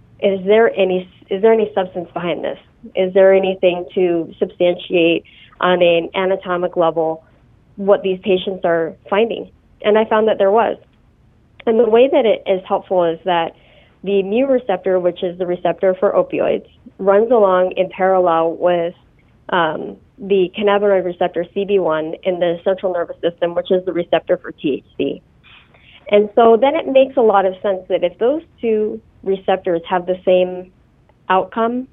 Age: 30-49